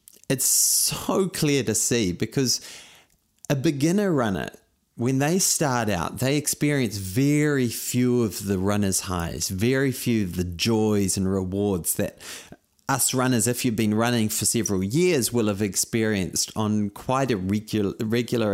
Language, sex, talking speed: English, male, 145 wpm